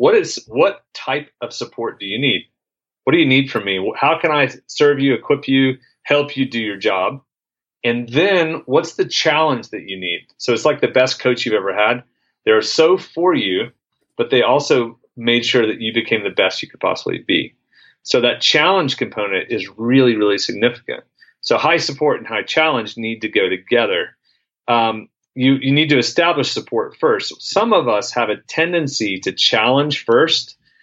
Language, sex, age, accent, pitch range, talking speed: English, male, 30-49, American, 115-145 Hz, 190 wpm